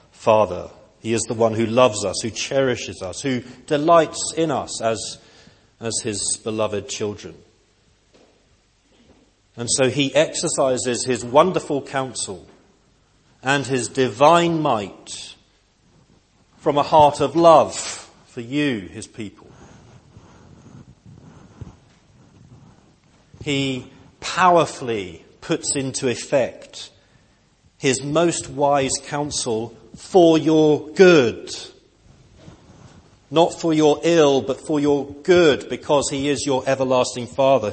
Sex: male